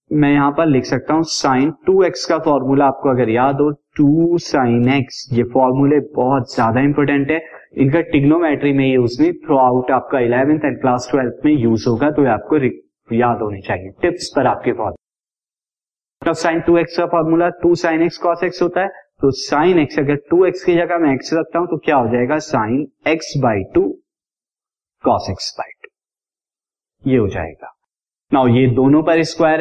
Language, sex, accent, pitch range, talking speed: Hindi, male, native, 125-160 Hz, 175 wpm